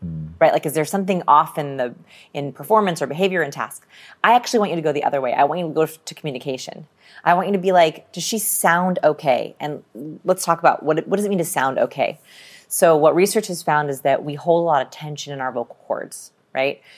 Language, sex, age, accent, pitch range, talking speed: English, female, 30-49, American, 145-180 Hz, 245 wpm